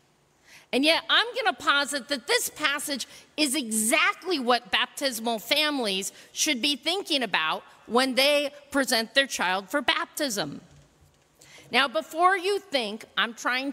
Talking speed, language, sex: 135 wpm, English, female